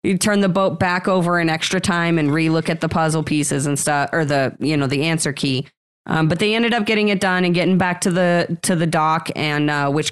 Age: 30-49